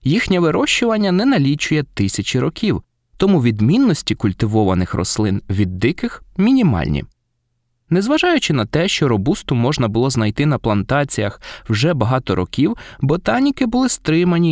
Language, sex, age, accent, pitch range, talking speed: Ukrainian, male, 20-39, native, 105-155 Hz, 120 wpm